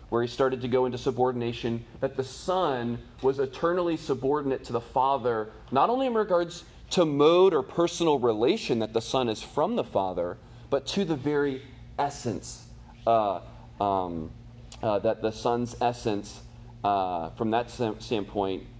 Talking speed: 155 wpm